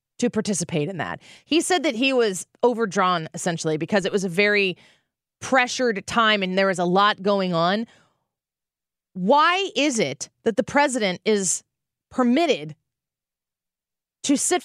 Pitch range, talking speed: 200-260 Hz, 145 wpm